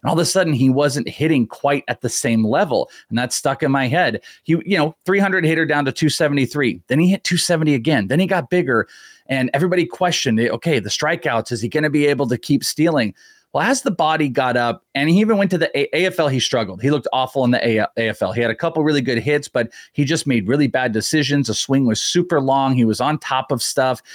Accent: American